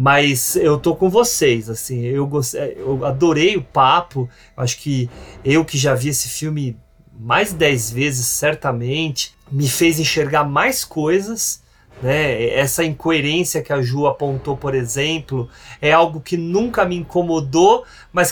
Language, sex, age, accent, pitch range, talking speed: Portuguese, male, 30-49, Brazilian, 135-185 Hz, 145 wpm